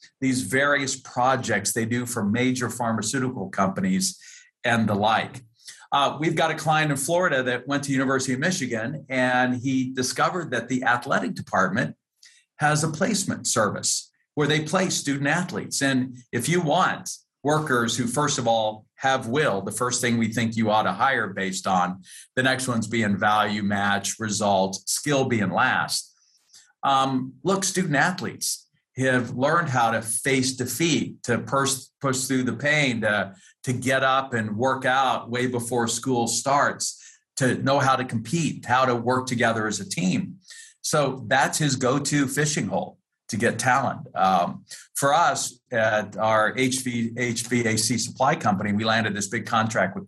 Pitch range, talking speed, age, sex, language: 115-145 Hz, 160 wpm, 50-69, male, English